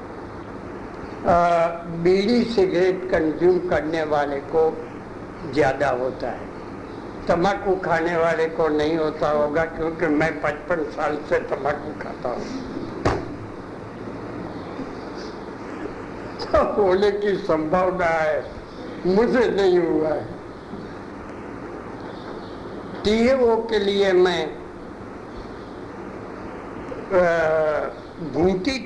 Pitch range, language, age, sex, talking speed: 155-190 Hz, Hindi, 60-79, male, 85 wpm